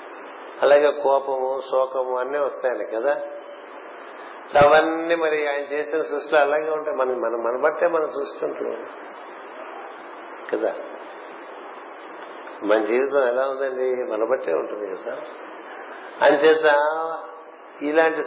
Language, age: Telugu, 50-69